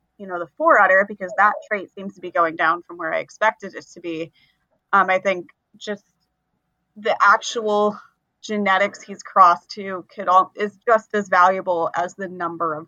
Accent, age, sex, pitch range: American, 30-49, female, 180-210 Hz